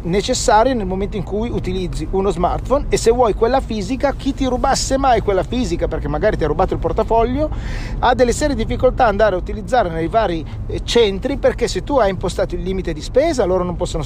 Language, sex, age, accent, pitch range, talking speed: Italian, male, 40-59, native, 165-235 Hz, 210 wpm